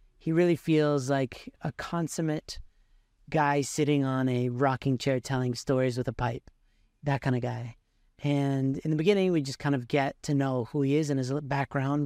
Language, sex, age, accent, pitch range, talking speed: English, male, 30-49, American, 130-160 Hz, 190 wpm